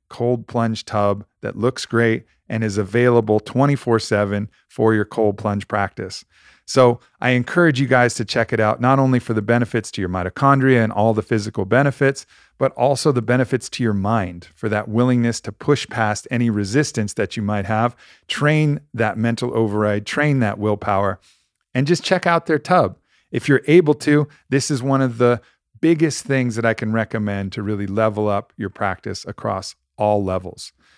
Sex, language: male, English